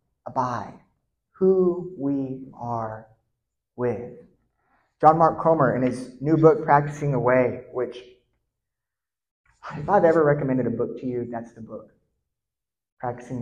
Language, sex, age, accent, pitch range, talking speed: English, male, 30-49, American, 130-185 Hz, 125 wpm